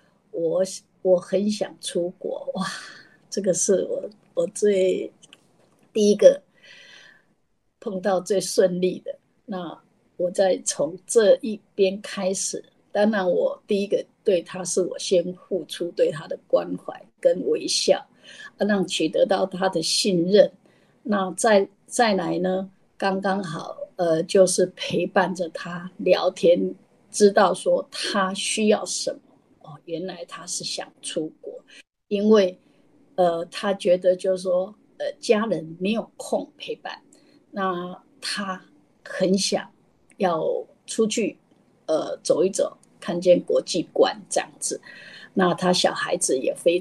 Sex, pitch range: female, 185-260 Hz